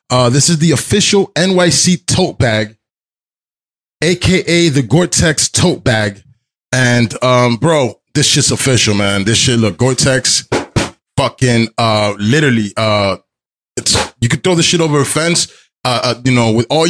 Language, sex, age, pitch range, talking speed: English, male, 20-39, 105-140 Hz, 155 wpm